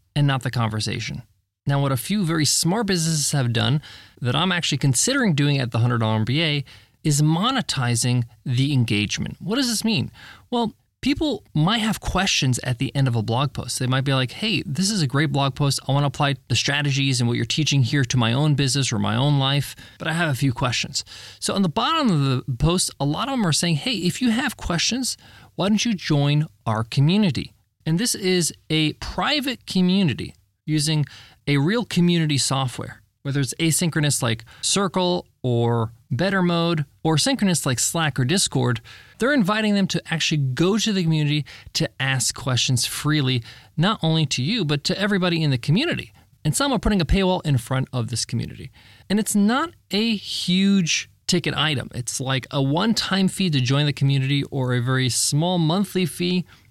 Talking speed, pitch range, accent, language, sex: 195 wpm, 125-180 Hz, American, English, male